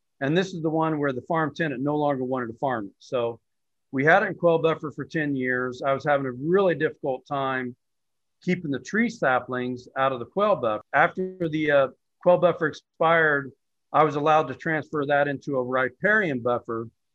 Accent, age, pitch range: American, 50-69, 125-155 Hz